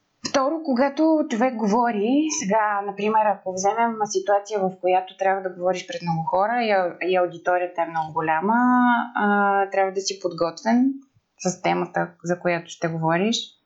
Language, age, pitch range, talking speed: Bulgarian, 20-39, 175-210 Hz, 140 wpm